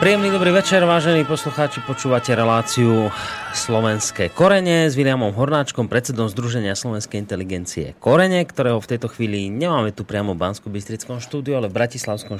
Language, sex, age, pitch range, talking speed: Slovak, male, 30-49, 105-140 Hz, 145 wpm